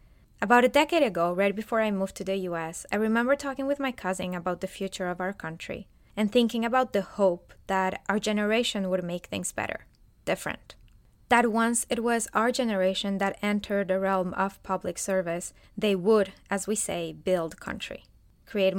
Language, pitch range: English, 185-225 Hz